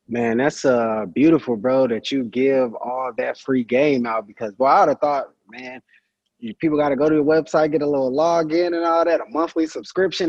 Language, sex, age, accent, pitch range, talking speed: English, male, 20-39, American, 130-165 Hz, 220 wpm